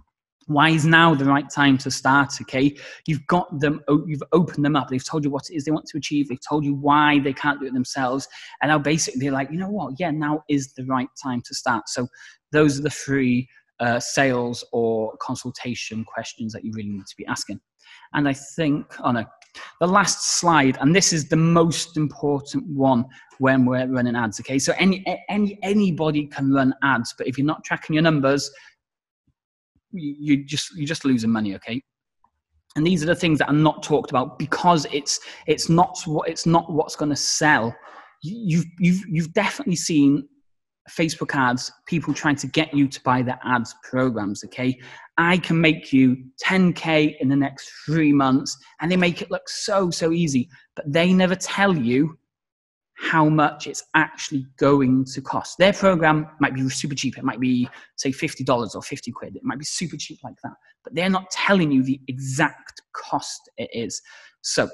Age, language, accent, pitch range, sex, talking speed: 30-49, English, British, 130-165 Hz, male, 195 wpm